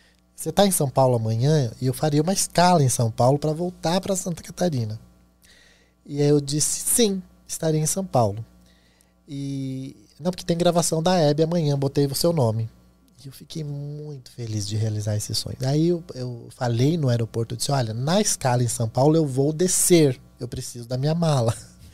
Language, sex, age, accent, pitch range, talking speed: Portuguese, male, 20-39, Brazilian, 110-155 Hz, 195 wpm